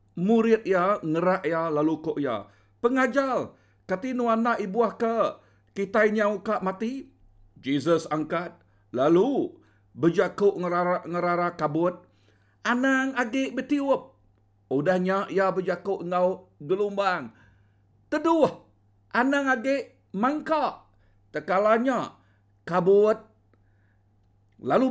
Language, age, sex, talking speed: Indonesian, 50-69, male, 90 wpm